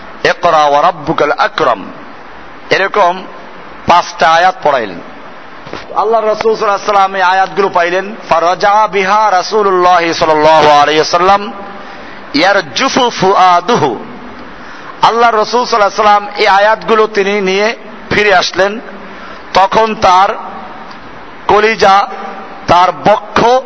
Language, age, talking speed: Bengali, 50-69, 40 wpm